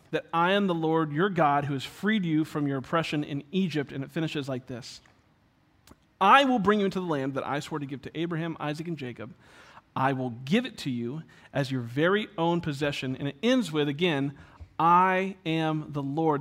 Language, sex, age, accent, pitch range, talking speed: English, male, 40-59, American, 155-215 Hz, 210 wpm